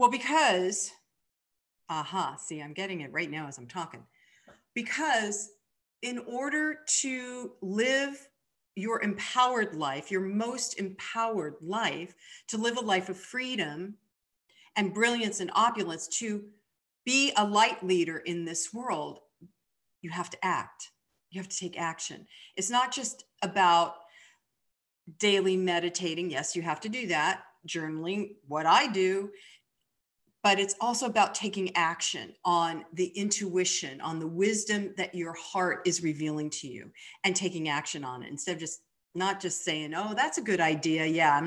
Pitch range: 170-220 Hz